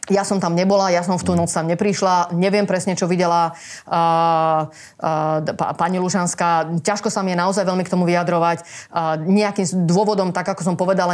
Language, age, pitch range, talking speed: Slovak, 30-49, 175-195 Hz, 190 wpm